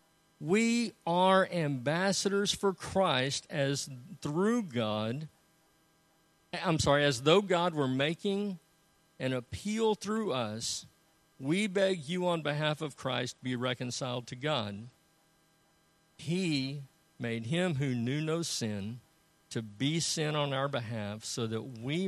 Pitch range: 145-190 Hz